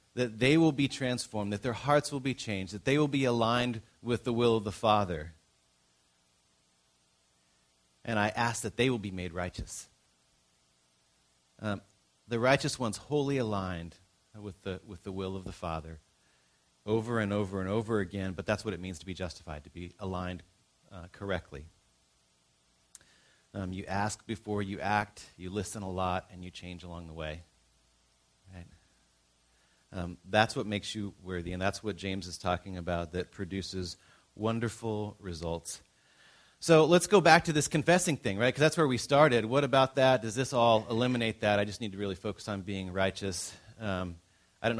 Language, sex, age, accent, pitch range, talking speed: English, male, 30-49, American, 85-115 Hz, 175 wpm